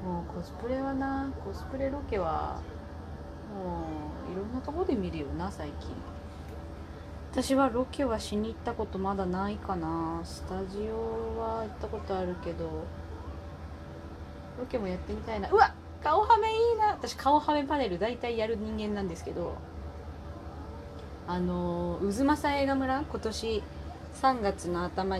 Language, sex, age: Japanese, female, 20-39